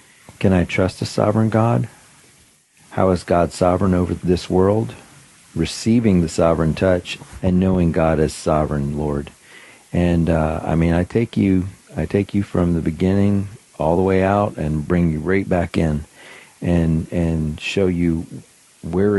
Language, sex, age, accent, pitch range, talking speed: English, male, 40-59, American, 80-95 Hz, 160 wpm